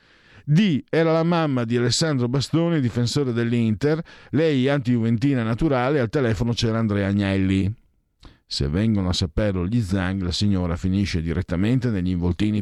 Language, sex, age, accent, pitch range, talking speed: Italian, male, 50-69, native, 90-125 Hz, 140 wpm